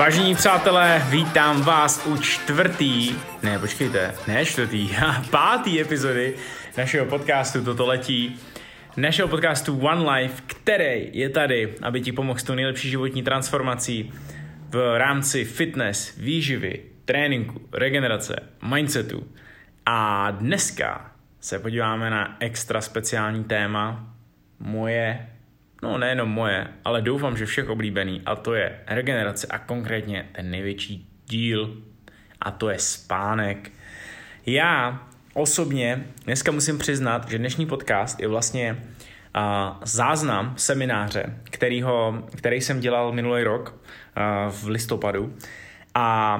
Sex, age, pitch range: male, 20-39, 110-135 Hz